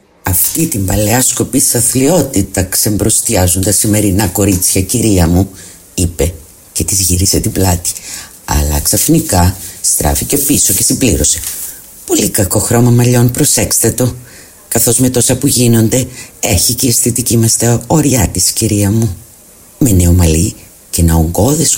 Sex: female